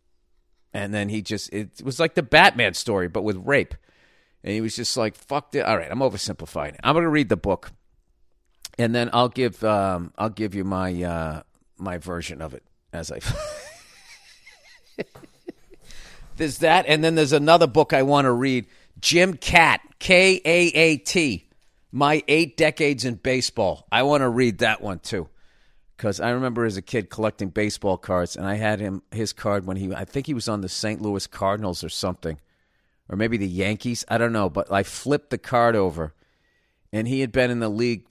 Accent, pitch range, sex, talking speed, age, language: American, 95-125 Hz, male, 190 wpm, 40-59, English